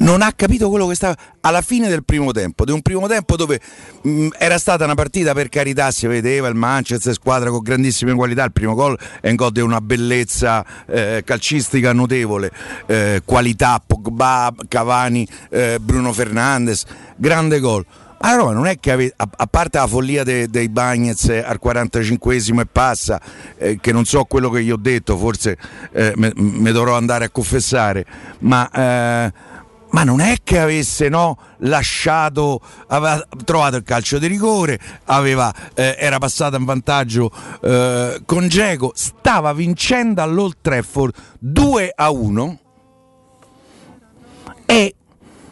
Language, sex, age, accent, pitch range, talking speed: Italian, male, 50-69, native, 115-150 Hz, 155 wpm